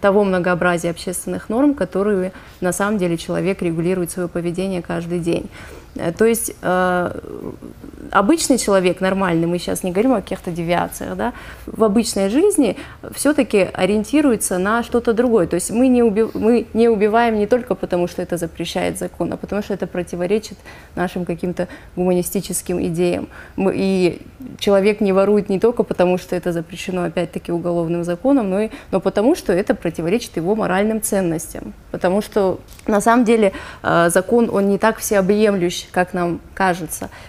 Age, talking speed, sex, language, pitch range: 20-39, 155 wpm, female, Russian, 175-215 Hz